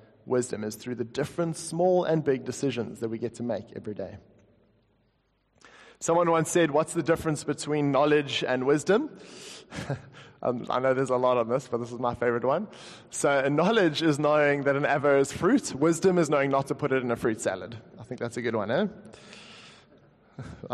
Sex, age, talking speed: male, 20-39, 195 wpm